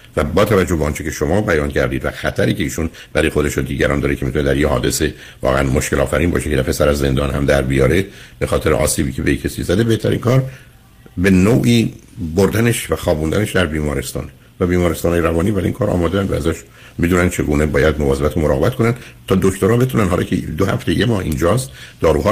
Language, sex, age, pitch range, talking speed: Persian, male, 60-79, 75-105 Hz, 210 wpm